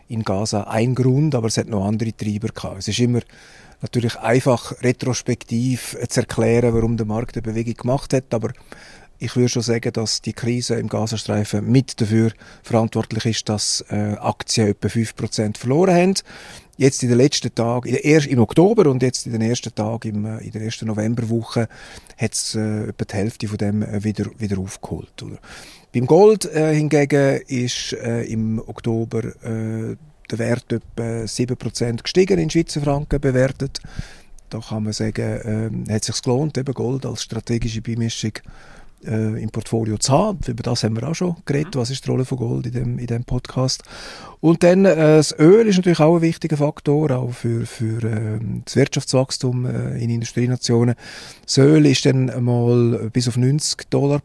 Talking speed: 165 wpm